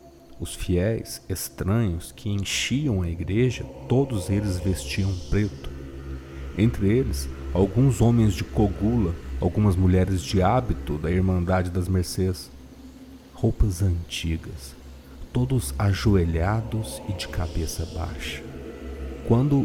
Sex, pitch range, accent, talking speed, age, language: male, 80-105 Hz, Brazilian, 105 wpm, 40-59, Portuguese